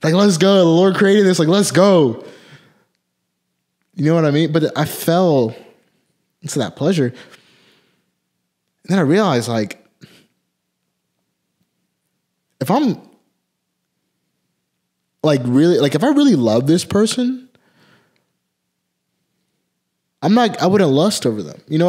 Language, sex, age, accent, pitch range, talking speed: English, male, 20-39, American, 115-155 Hz, 125 wpm